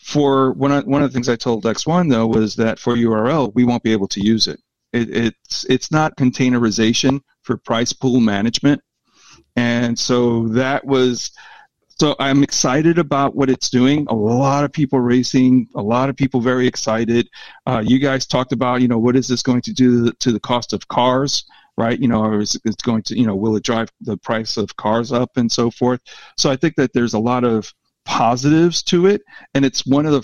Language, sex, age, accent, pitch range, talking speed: English, male, 40-59, American, 115-135 Hz, 210 wpm